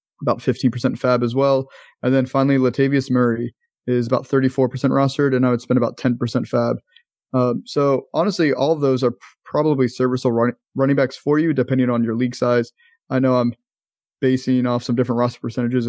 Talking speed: 185 wpm